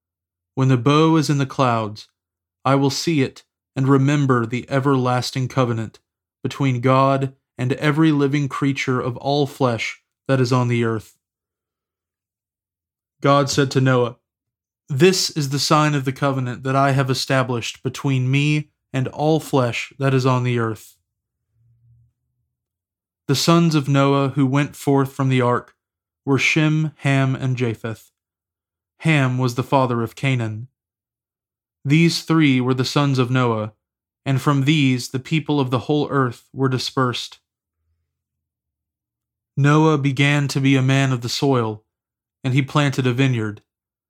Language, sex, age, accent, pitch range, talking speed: English, male, 20-39, American, 115-140 Hz, 145 wpm